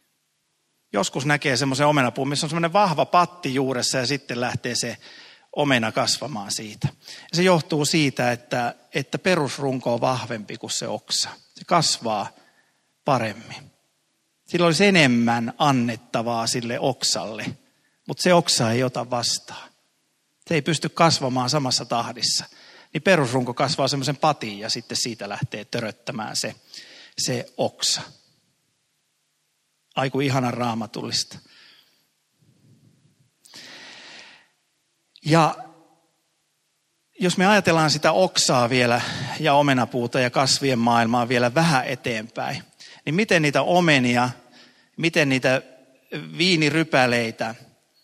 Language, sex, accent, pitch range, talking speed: Finnish, male, native, 120-160 Hz, 110 wpm